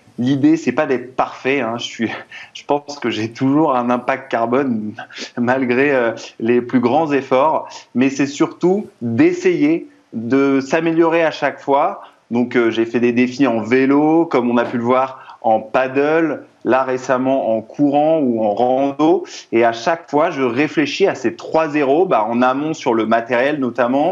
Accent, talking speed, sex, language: French, 175 wpm, male, French